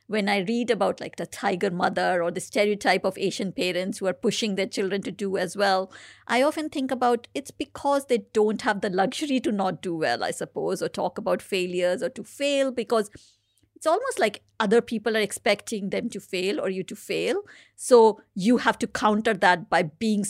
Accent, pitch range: Indian, 190-240 Hz